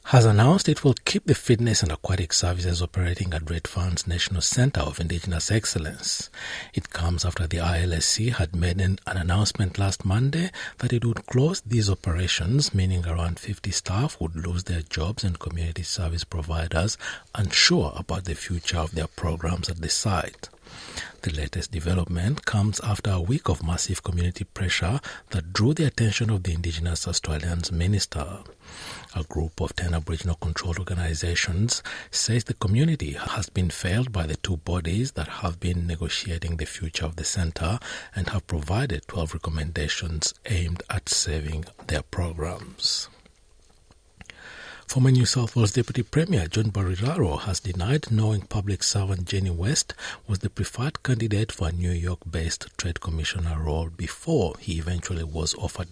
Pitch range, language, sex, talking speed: 85-105 Hz, English, male, 155 wpm